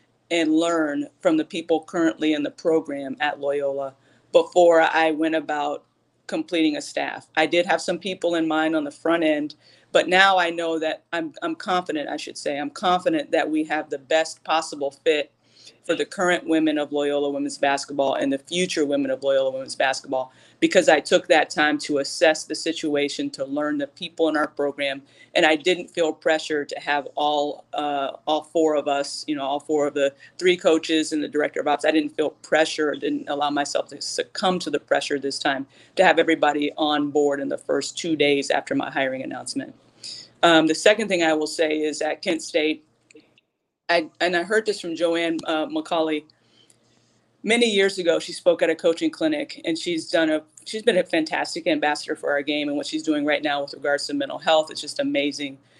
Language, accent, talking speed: English, American, 205 wpm